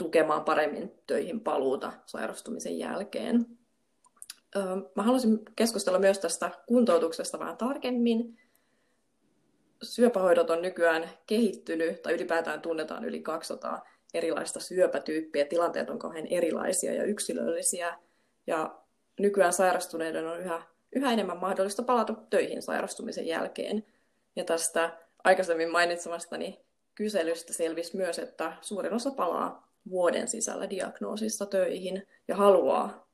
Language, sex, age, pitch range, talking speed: Finnish, female, 20-39, 170-225 Hz, 105 wpm